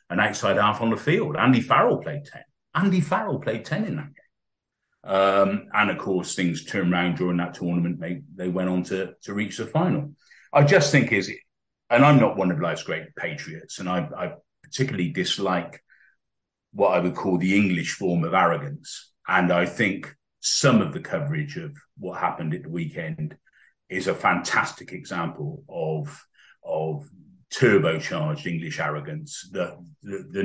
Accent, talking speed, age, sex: British, 170 wpm, 40-59, male